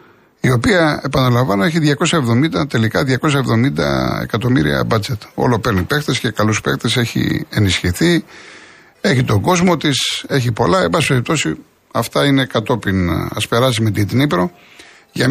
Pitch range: 110-140 Hz